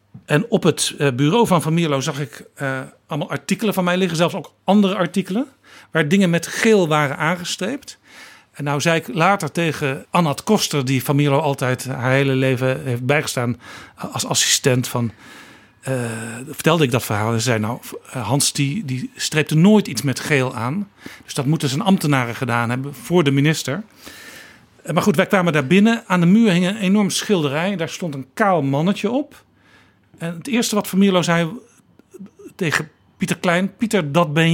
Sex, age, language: male, 50-69, Dutch